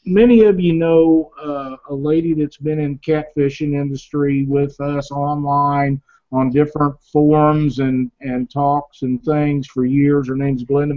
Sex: male